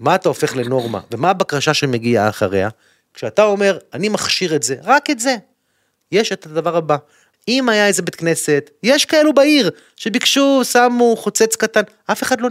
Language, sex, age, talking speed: Hebrew, male, 30-49, 175 wpm